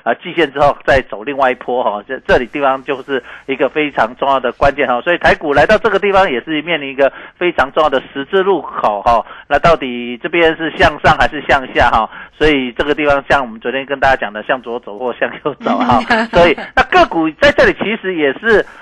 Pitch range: 135-180 Hz